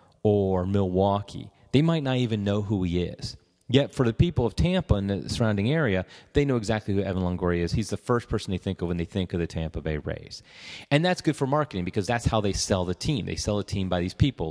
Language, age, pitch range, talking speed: English, 30-49, 95-125 Hz, 250 wpm